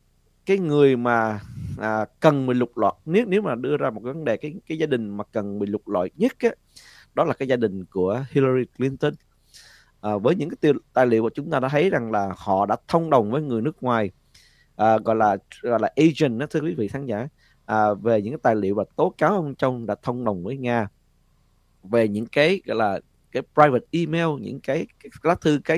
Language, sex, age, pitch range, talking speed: Vietnamese, male, 20-39, 110-155 Hz, 225 wpm